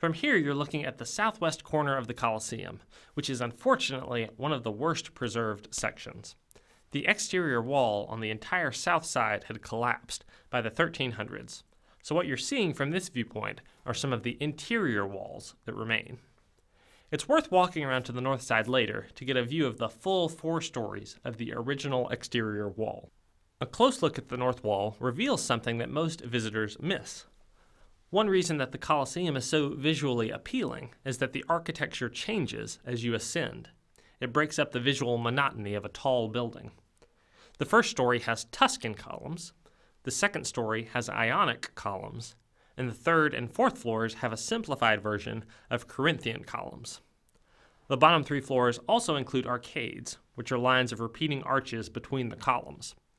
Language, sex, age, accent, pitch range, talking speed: English, male, 30-49, American, 115-155 Hz, 170 wpm